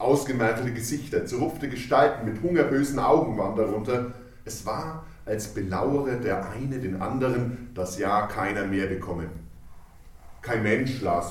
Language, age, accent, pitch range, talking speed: German, 40-59, German, 100-145 Hz, 135 wpm